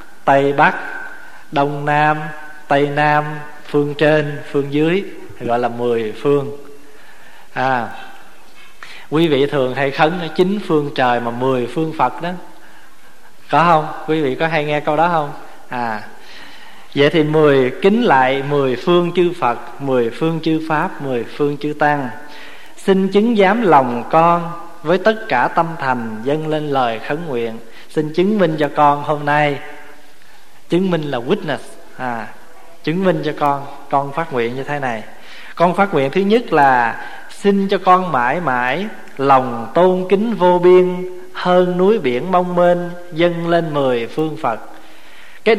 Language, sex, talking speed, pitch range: Vietnamese, male, 160 wpm, 140-185 Hz